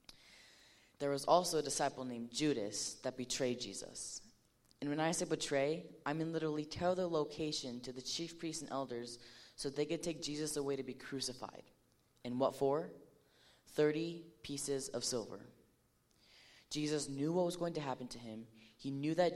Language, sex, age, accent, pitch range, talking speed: English, female, 20-39, American, 120-150 Hz, 170 wpm